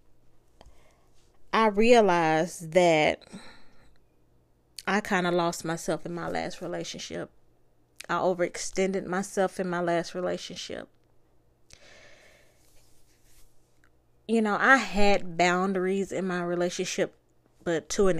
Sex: female